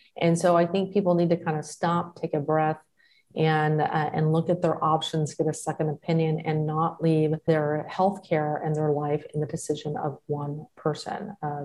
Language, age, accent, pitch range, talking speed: English, 30-49, American, 155-175 Hz, 200 wpm